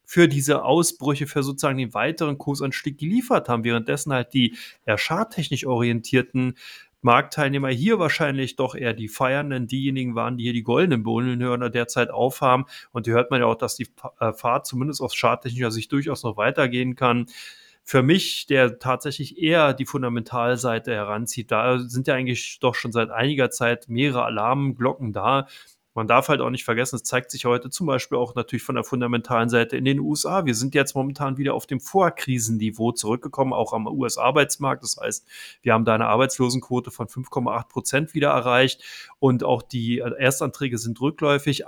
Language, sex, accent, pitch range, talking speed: German, male, German, 120-145 Hz, 175 wpm